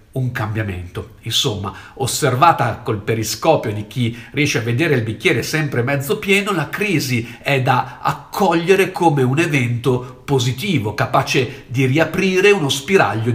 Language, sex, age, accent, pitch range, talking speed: Italian, male, 50-69, native, 115-160 Hz, 135 wpm